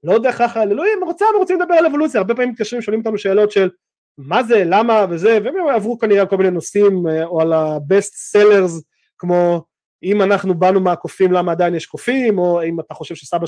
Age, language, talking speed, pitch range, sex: 20-39, Hebrew, 200 wpm, 165-215 Hz, male